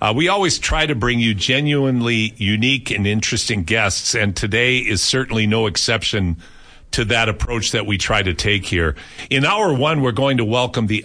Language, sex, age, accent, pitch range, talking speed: English, male, 50-69, American, 100-125 Hz, 190 wpm